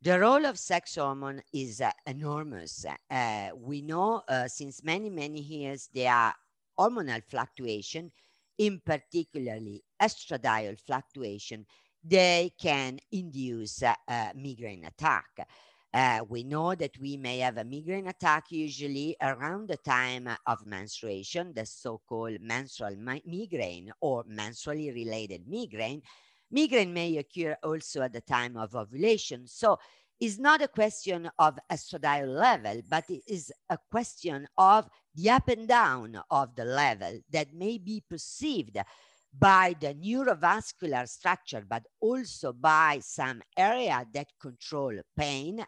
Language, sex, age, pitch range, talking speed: English, female, 50-69, 125-185 Hz, 135 wpm